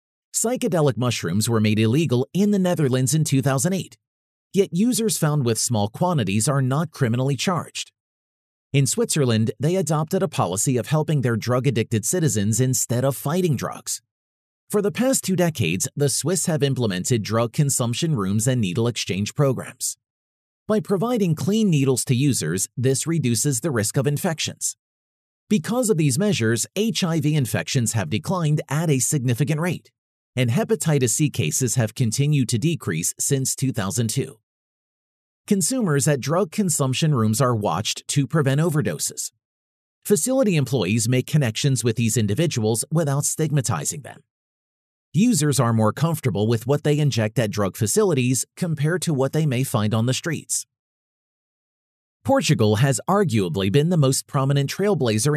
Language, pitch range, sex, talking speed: English, 115-160 Hz, male, 145 wpm